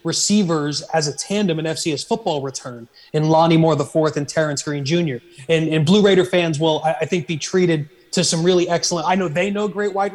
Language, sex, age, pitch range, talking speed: English, male, 30-49, 150-175 Hz, 220 wpm